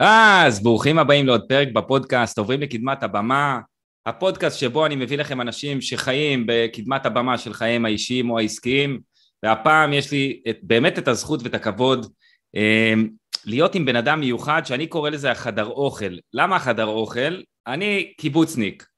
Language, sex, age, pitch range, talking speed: Hebrew, male, 20-39, 120-155 Hz, 150 wpm